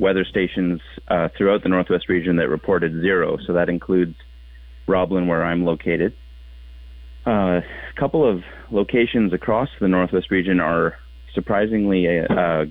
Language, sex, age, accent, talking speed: English, male, 30-49, American, 135 wpm